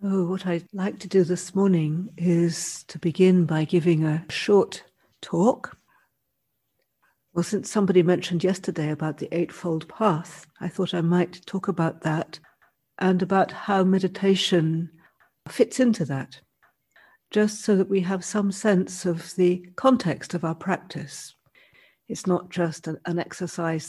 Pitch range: 165-190 Hz